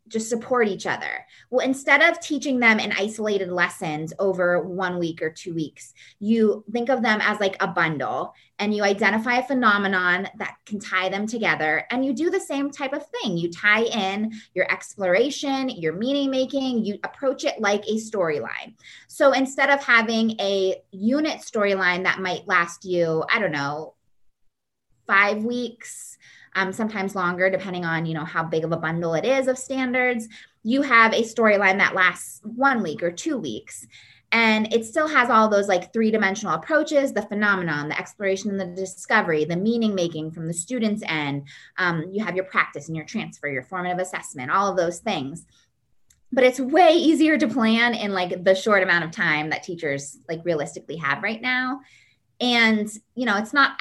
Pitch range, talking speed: 180-240 Hz, 185 wpm